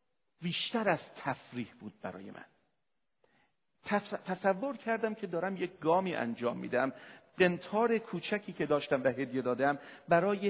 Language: Persian